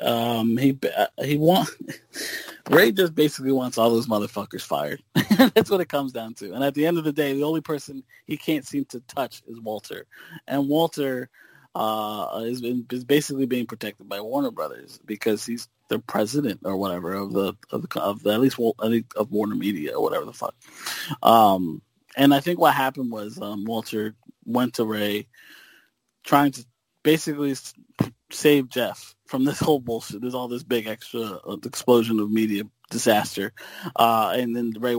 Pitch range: 115-150 Hz